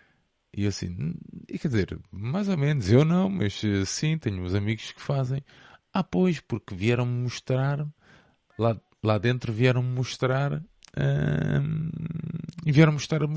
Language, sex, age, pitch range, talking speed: Portuguese, male, 20-39, 95-120 Hz, 135 wpm